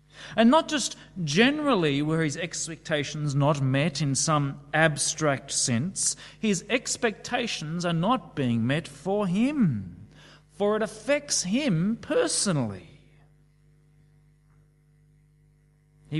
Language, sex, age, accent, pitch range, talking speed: English, male, 30-49, Australian, 135-170 Hz, 100 wpm